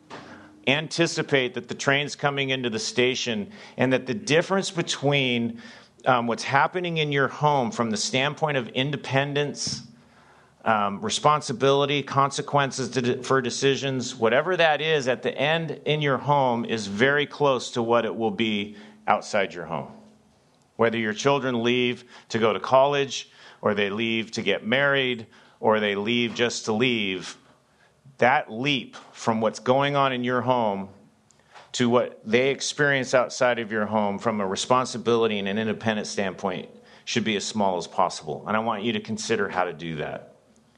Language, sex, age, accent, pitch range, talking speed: English, male, 40-59, American, 115-140 Hz, 160 wpm